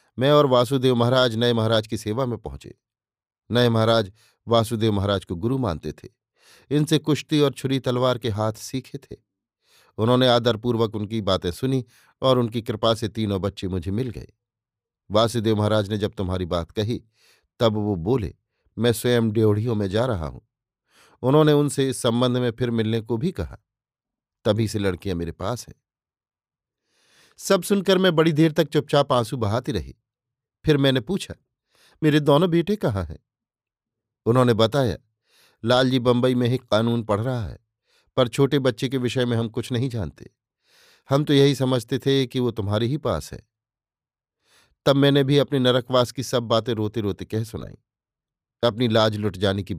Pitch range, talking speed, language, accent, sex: 110-130 Hz, 170 wpm, Hindi, native, male